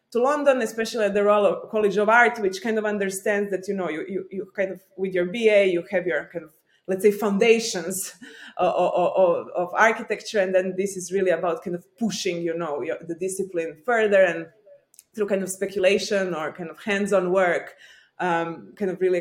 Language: English